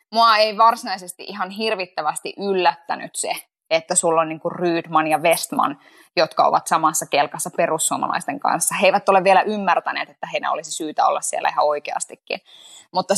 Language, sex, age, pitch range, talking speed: Finnish, female, 20-39, 170-220 Hz, 155 wpm